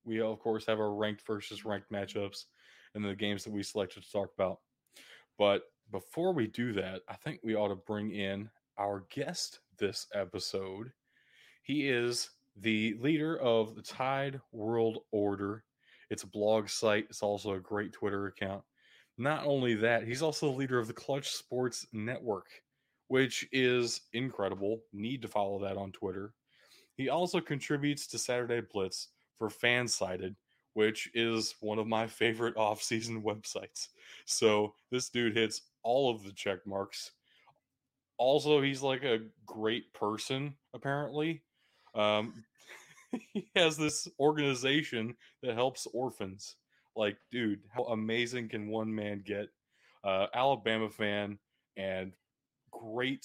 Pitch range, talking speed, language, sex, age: 105-125 Hz, 145 wpm, English, male, 20-39